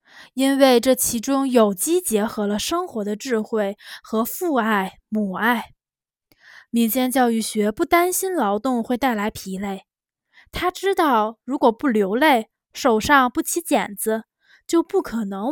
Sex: female